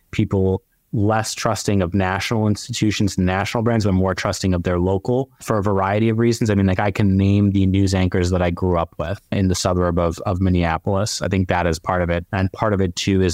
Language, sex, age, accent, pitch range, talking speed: English, male, 30-49, American, 95-115 Hz, 235 wpm